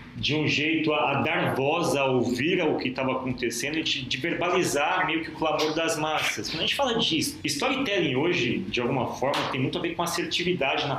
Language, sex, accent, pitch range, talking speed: Portuguese, male, Brazilian, 125-165 Hz, 215 wpm